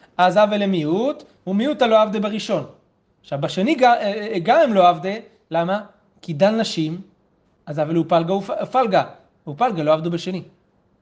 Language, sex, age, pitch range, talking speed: Hebrew, male, 30-49, 165-215 Hz, 170 wpm